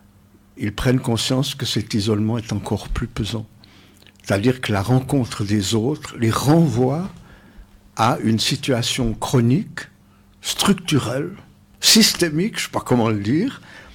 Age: 60-79